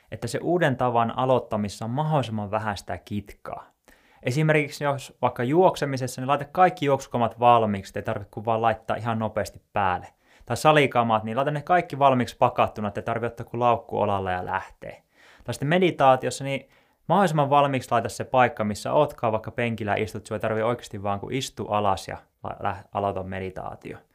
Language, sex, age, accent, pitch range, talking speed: Finnish, male, 20-39, native, 105-135 Hz, 170 wpm